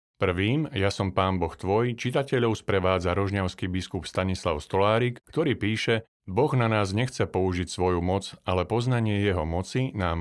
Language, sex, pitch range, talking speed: Slovak, male, 90-115 Hz, 155 wpm